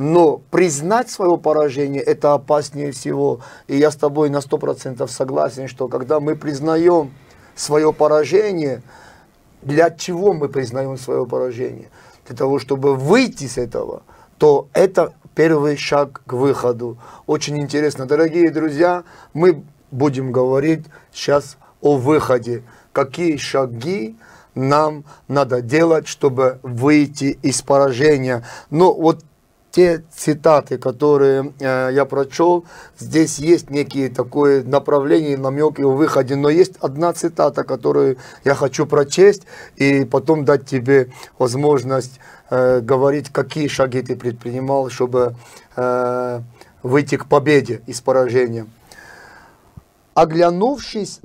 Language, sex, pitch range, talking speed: Russian, male, 130-160 Hz, 115 wpm